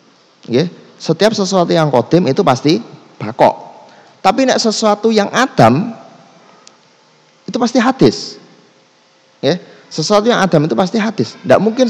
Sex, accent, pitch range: male, native, 155-205 Hz